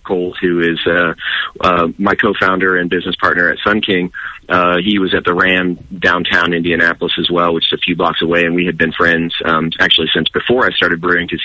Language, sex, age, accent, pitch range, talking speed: English, male, 30-49, American, 85-90 Hz, 215 wpm